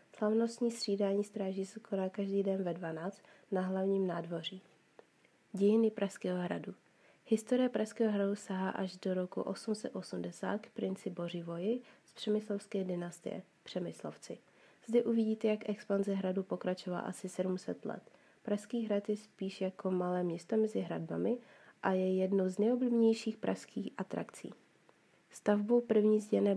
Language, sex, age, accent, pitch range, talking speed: Czech, female, 30-49, native, 180-215 Hz, 130 wpm